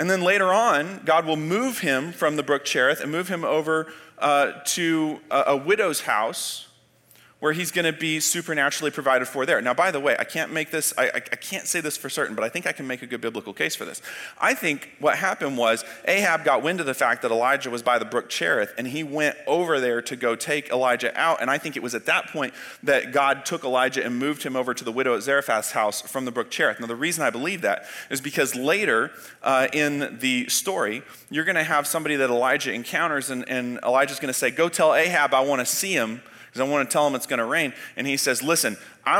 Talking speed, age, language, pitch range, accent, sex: 240 wpm, 30-49, English, 135-180 Hz, American, male